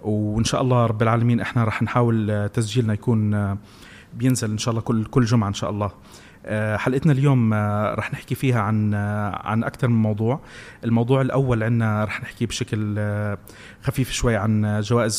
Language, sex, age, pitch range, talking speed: Arabic, male, 30-49, 105-125 Hz, 160 wpm